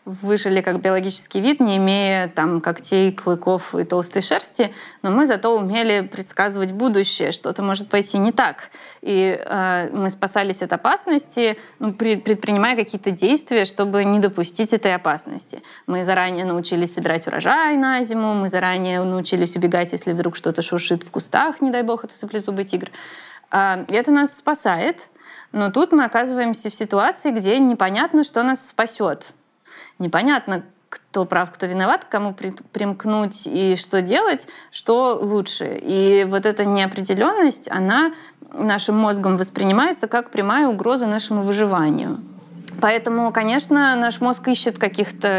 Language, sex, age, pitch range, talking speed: Russian, female, 20-39, 190-235 Hz, 140 wpm